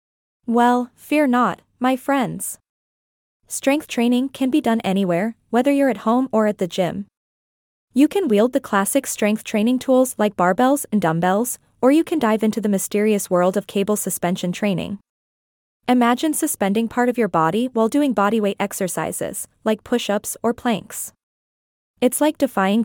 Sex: female